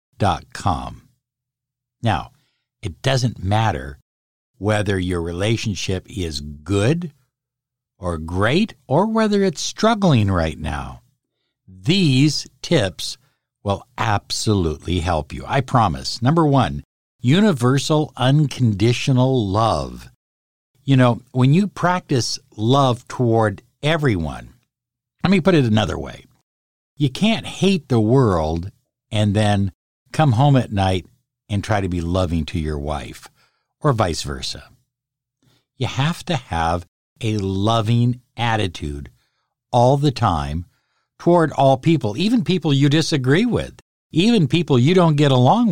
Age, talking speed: 60-79, 120 wpm